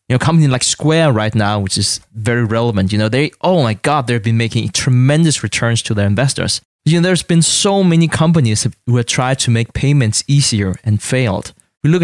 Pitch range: 110-150 Hz